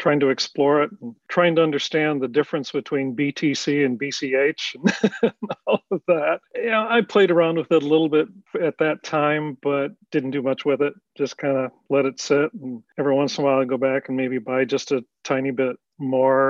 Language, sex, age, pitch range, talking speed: English, male, 40-59, 135-155 Hz, 215 wpm